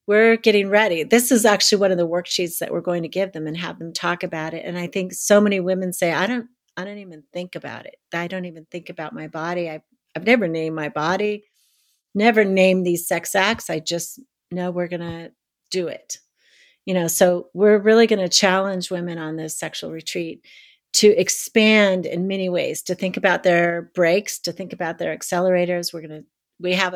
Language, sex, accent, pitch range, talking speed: English, female, American, 175-205 Hz, 215 wpm